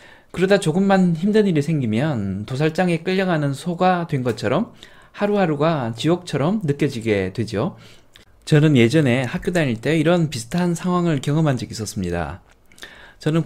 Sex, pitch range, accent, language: male, 120-175 Hz, native, Korean